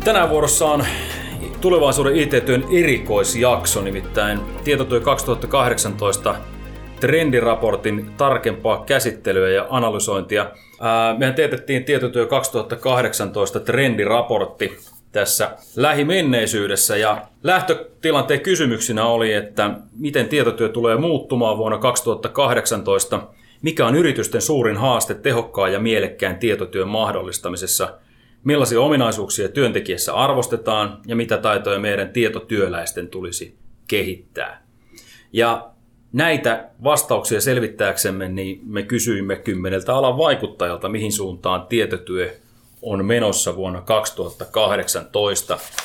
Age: 30-49